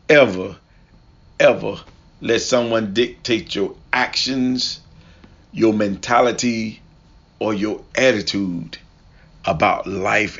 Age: 40-59